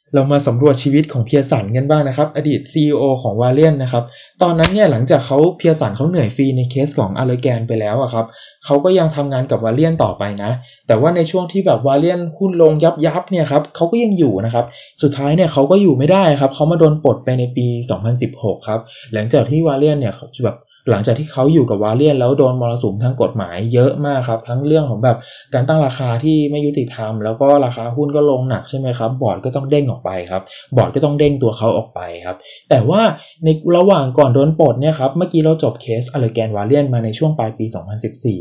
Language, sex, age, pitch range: Thai, male, 20-39, 125-160 Hz